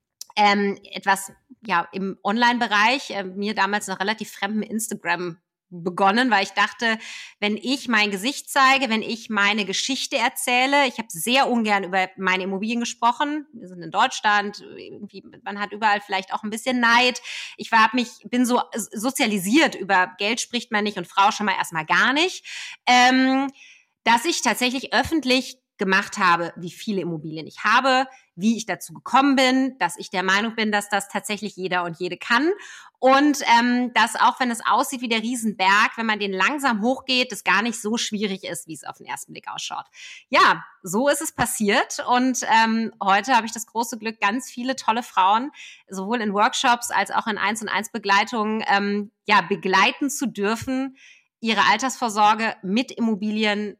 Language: German